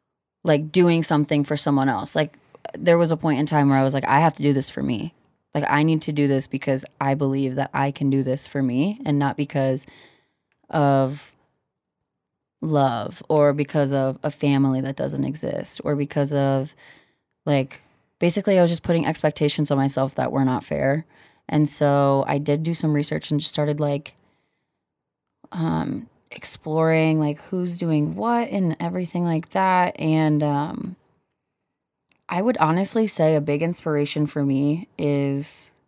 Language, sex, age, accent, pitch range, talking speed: English, female, 20-39, American, 140-165 Hz, 170 wpm